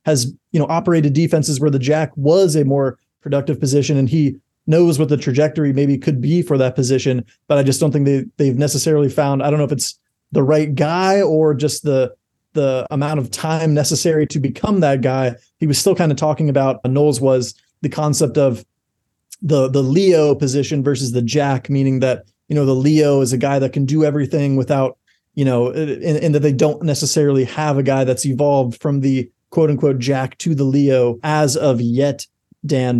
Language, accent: English, American